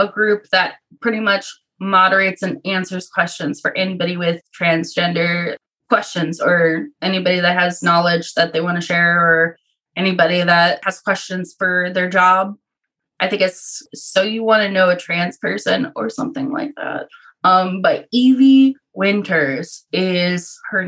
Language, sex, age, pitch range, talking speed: English, female, 20-39, 175-220 Hz, 150 wpm